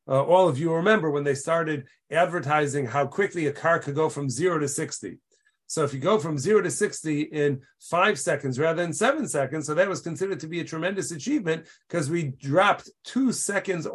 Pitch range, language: 155-190 Hz, English